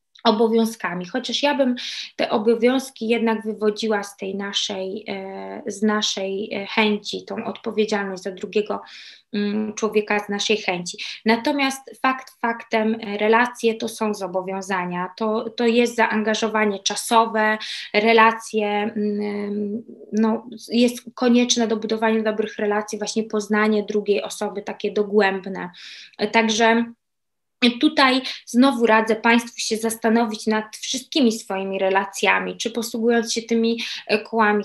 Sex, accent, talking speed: female, native, 110 wpm